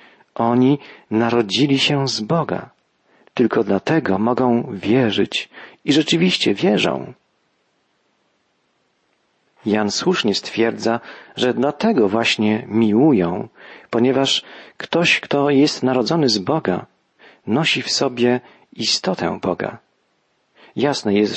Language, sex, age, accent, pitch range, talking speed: Polish, male, 40-59, native, 110-140 Hz, 95 wpm